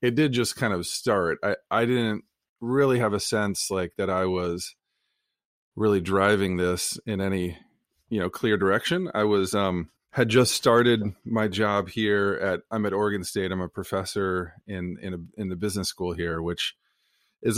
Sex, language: male, English